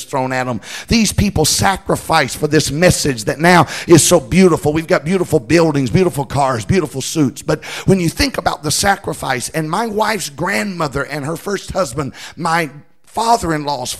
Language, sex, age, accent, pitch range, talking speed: English, male, 50-69, American, 150-195 Hz, 165 wpm